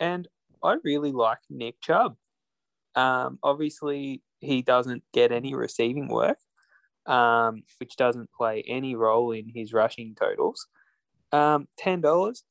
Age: 20-39